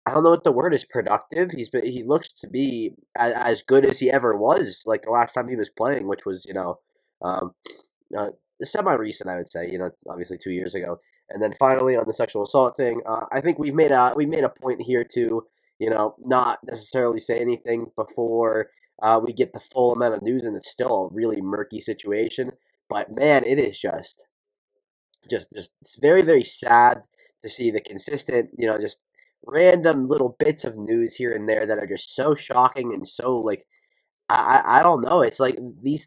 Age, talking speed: 20-39, 215 wpm